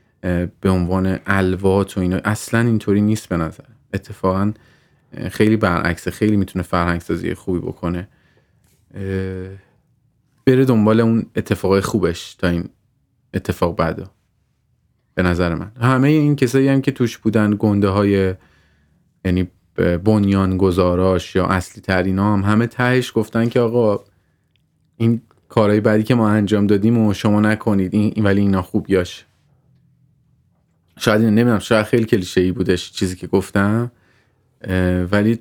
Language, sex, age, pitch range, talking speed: Persian, male, 30-49, 95-115 Hz, 130 wpm